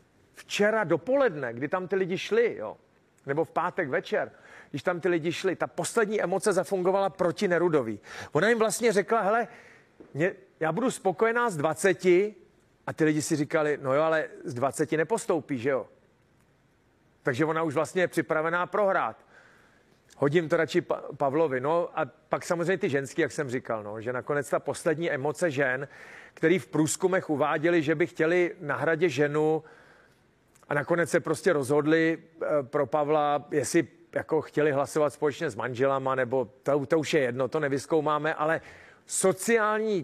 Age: 40-59